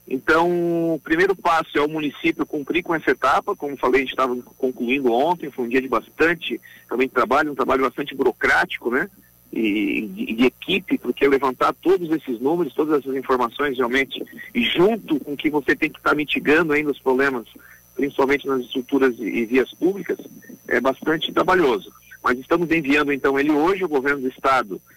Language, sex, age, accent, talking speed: Portuguese, male, 50-69, Brazilian, 185 wpm